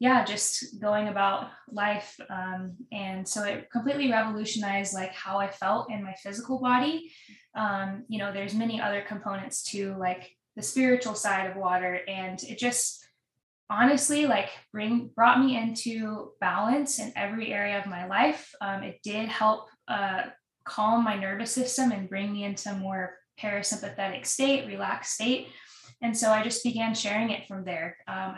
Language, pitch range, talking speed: English, 195-230 Hz, 165 wpm